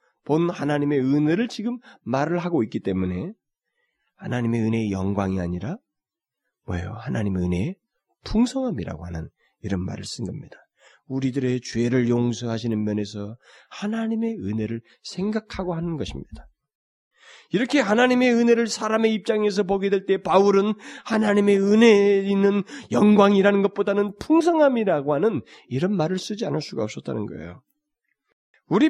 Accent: native